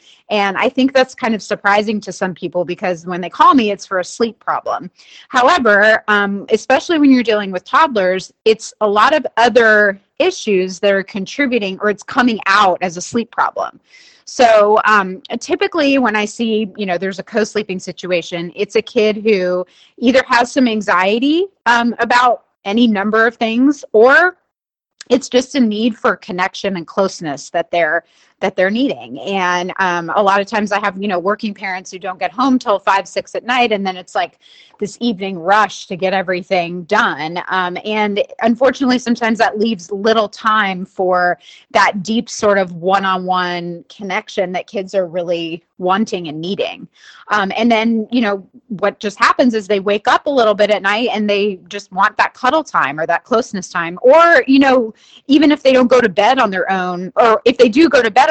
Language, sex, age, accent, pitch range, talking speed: English, female, 30-49, American, 185-235 Hz, 190 wpm